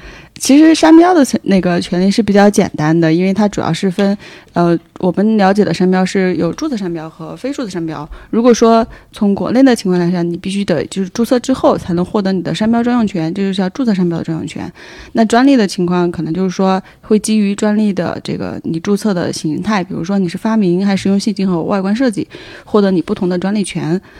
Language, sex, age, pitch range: Chinese, female, 20-39, 175-220 Hz